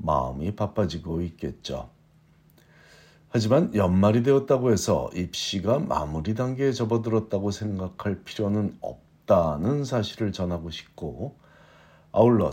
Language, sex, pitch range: Korean, male, 85-115 Hz